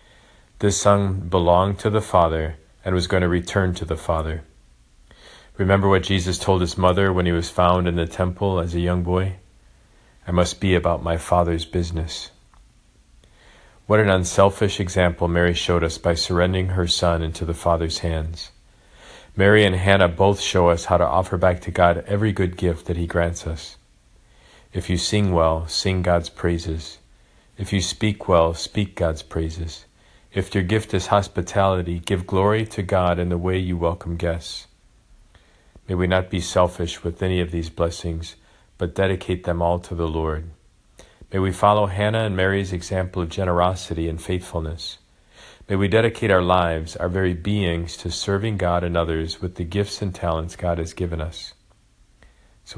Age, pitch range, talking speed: 40-59, 85-95 Hz, 175 wpm